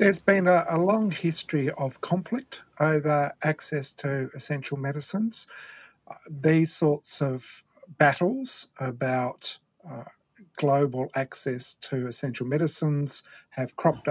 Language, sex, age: English, male, 50-69